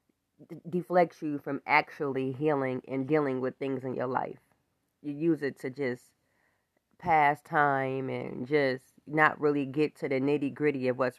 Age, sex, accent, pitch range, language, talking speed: 20-39, female, American, 145-180 Hz, English, 155 wpm